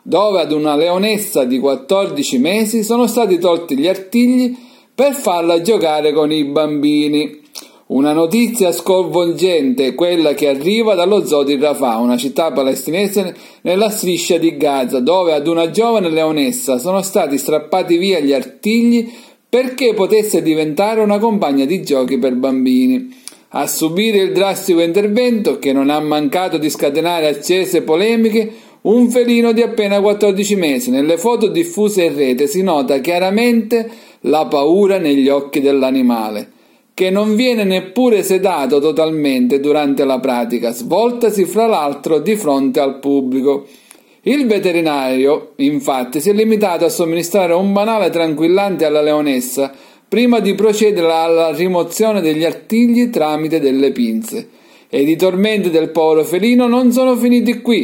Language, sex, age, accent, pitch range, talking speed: Italian, male, 40-59, native, 150-220 Hz, 140 wpm